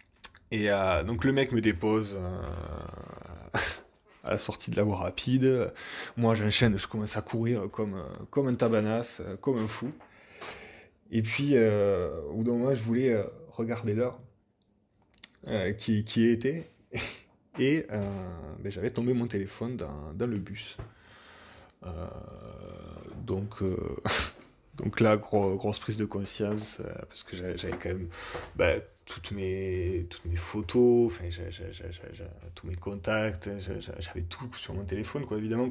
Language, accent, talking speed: French, French, 135 wpm